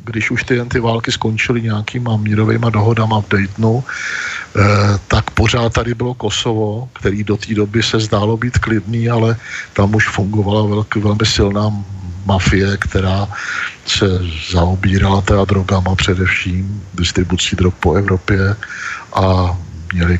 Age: 50-69